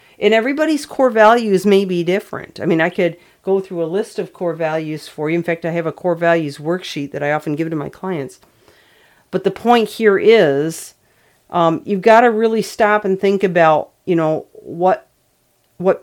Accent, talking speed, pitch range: American, 200 wpm, 160-195 Hz